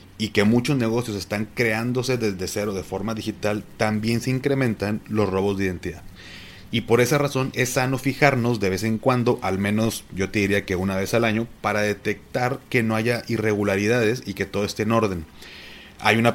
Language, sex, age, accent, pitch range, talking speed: Spanish, male, 30-49, Mexican, 100-120 Hz, 195 wpm